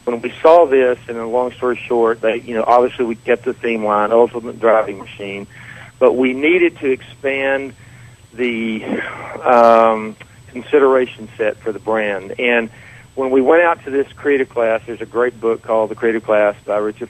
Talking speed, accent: 185 wpm, American